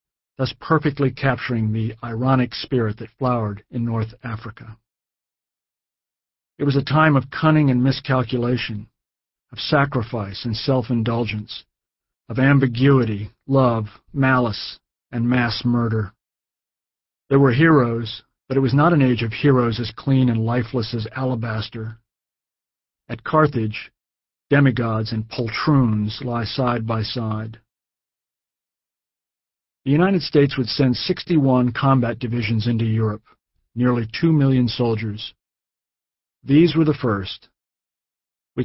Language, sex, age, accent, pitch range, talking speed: English, male, 40-59, American, 110-135 Hz, 115 wpm